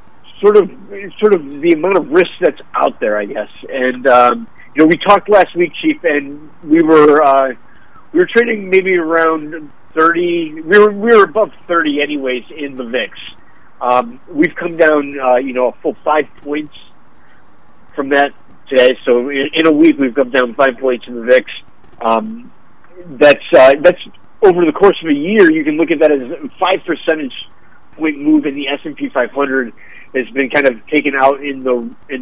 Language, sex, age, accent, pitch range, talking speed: English, male, 50-69, American, 130-180 Hz, 195 wpm